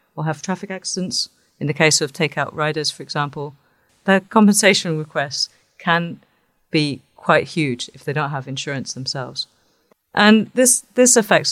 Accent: British